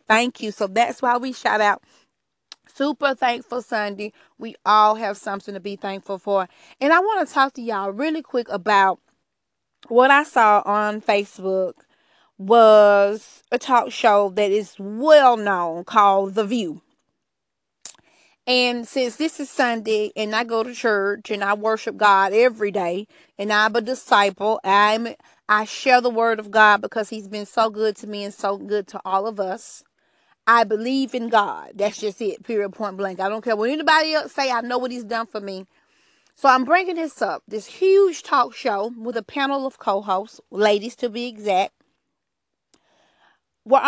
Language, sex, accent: English, female, American